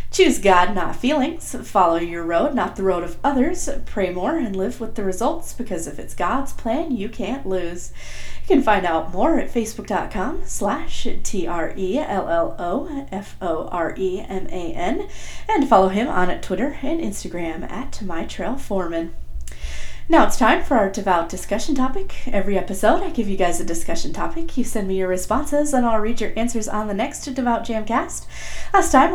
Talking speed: 165 wpm